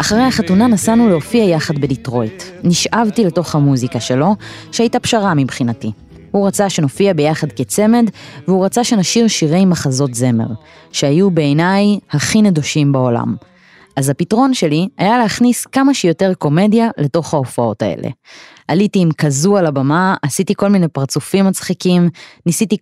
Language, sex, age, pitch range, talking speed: Hebrew, female, 20-39, 140-195 Hz, 135 wpm